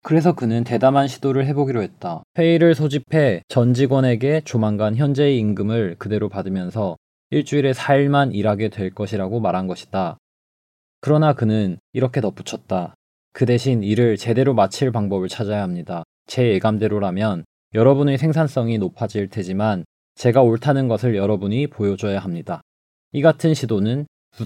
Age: 20-39